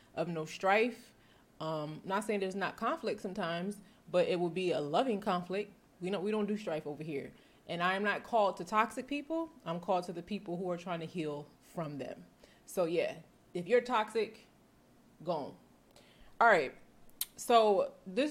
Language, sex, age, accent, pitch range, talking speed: English, female, 20-39, American, 160-220 Hz, 180 wpm